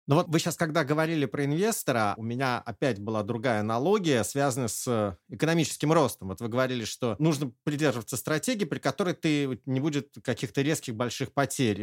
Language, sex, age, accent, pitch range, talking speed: Russian, male, 30-49, native, 115-155 Hz, 170 wpm